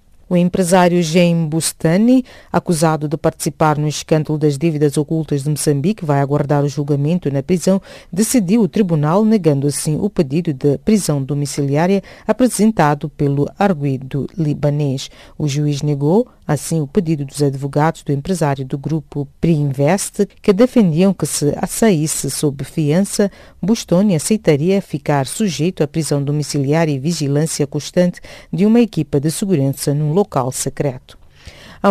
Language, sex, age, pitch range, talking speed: English, female, 40-59, 145-185 Hz, 135 wpm